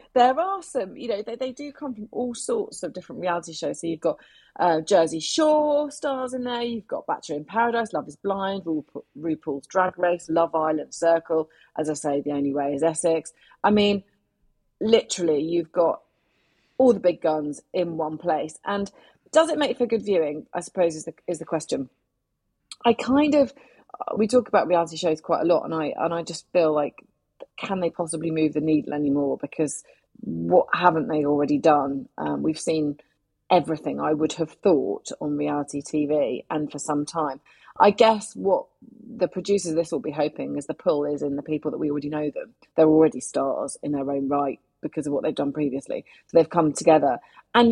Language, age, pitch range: English, 30-49, 150-195 Hz